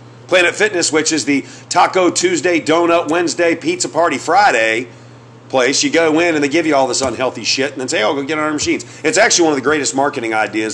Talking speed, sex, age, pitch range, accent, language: 230 wpm, male, 40-59, 130-165 Hz, American, English